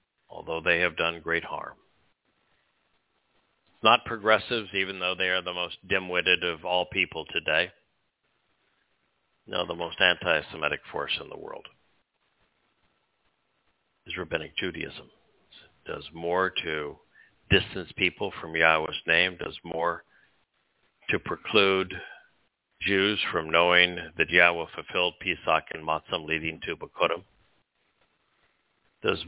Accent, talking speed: American, 115 wpm